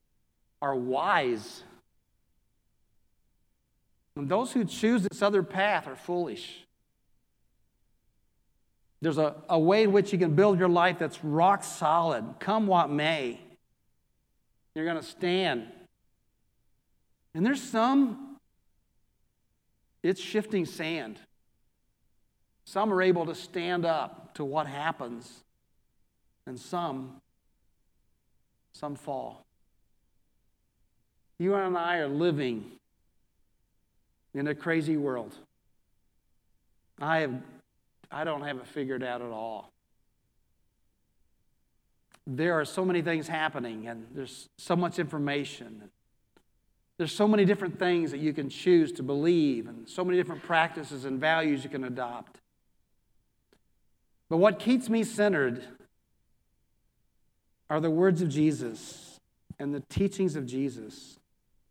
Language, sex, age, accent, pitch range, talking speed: English, male, 50-69, American, 135-180 Hz, 115 wpm